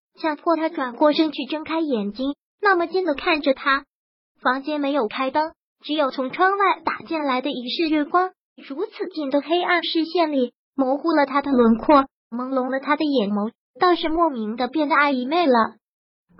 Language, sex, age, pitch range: Chinese, male, 20-39, 265-335 Hz